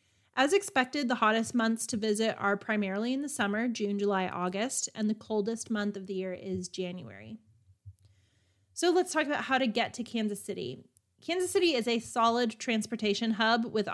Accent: American